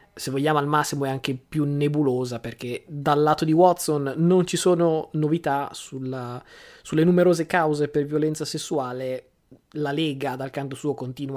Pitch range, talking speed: 140-165 Hz, 160 wpm